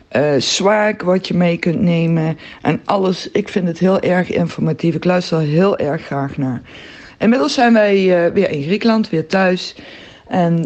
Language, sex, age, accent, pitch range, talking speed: Dutch, female, 60-79, Dutch, 160-195 Hz, 175 wpm